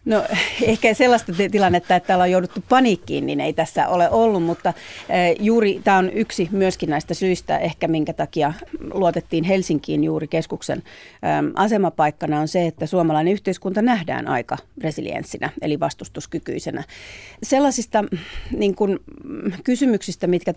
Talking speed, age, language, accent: 125 wpm, 40-59, Finnish, native